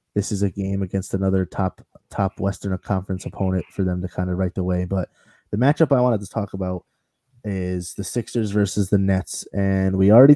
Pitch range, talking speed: 95-115 Hz, 210 wpm